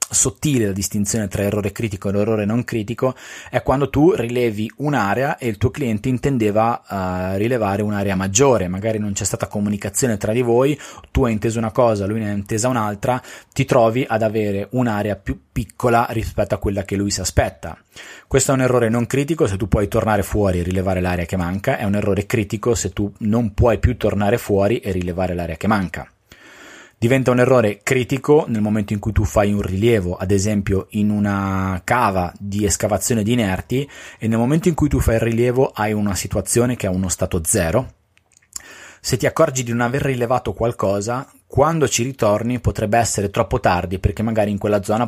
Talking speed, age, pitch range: 195 wpm, 30-49, 100-120 Hz